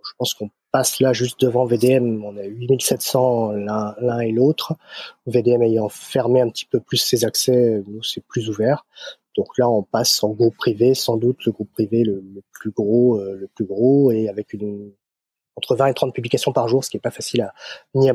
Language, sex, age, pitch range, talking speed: French, male, 20-39, 105-130 Hz, 220 wpm